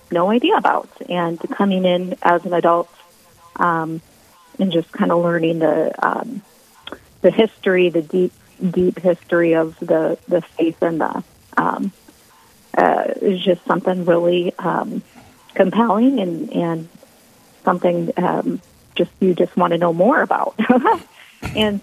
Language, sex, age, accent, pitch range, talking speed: English, female, 30-49, American, 165-200 Hz, 135 wpm